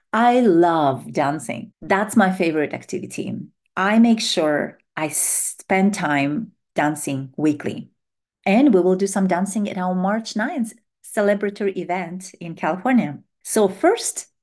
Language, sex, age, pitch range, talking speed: English, female, 40-59, 165-215 Hz, 130 wpm